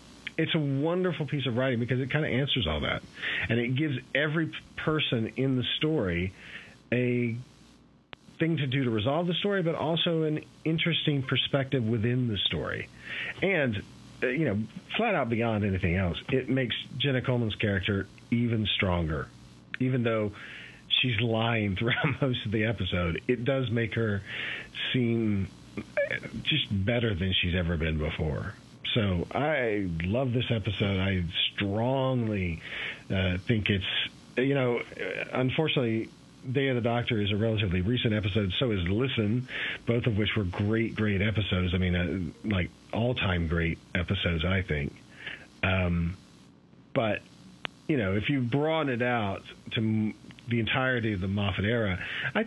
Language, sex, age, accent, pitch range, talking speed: English, male, 40-59, American, 95-130 Hz, 150 wpm